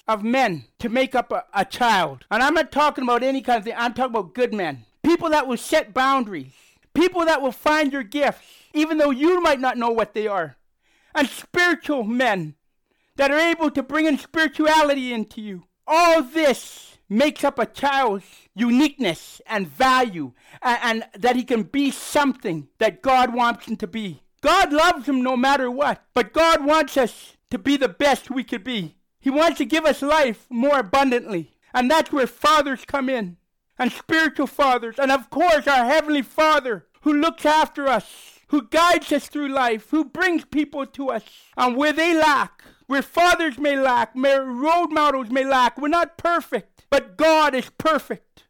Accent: American